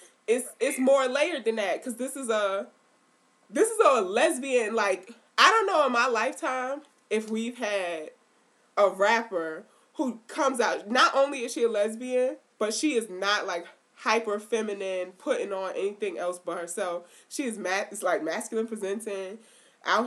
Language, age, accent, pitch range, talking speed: English, 20-39, American, 200-285 Hz, 165 wpm